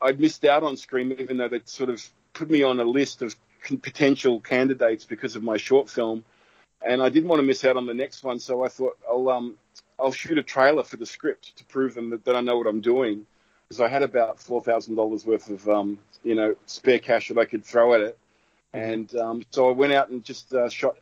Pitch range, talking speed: 110-130 Hz, 245 wpm